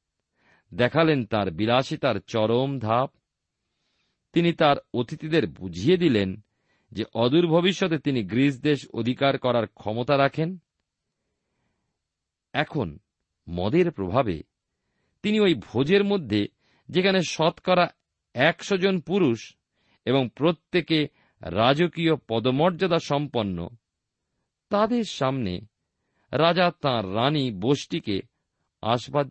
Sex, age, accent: male, 50-69, native